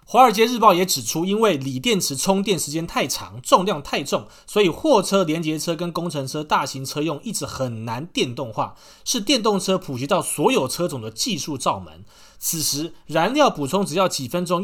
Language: Chinese